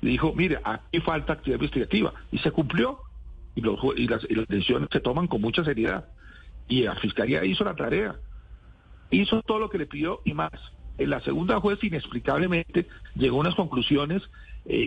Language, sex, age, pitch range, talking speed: Spanish, male, 50-69, 125-185 Hz, 175 wpm